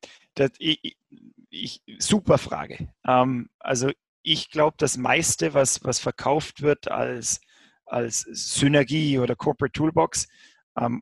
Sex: male